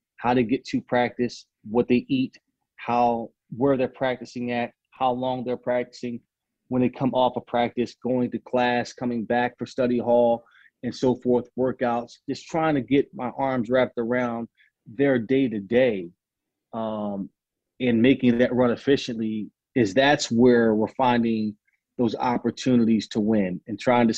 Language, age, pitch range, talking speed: English, 30-49, 115-130 Hz, 160 wpm